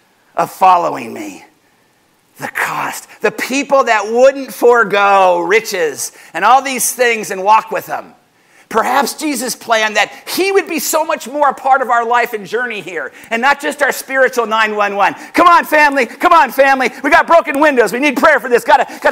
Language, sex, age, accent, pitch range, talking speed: English, male, 50-69, American, 215-295 Hz, 185 wpm